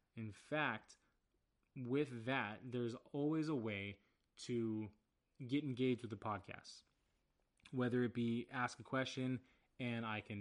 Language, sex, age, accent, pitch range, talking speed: English, male, 20-39, American, 110-130 Hz, 135 wpm